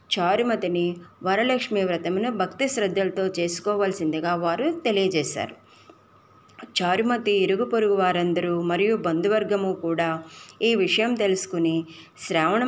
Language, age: Telugu, 30-49